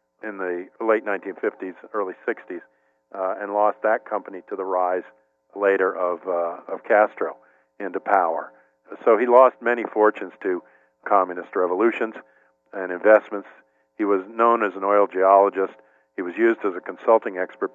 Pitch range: 80-105 Hz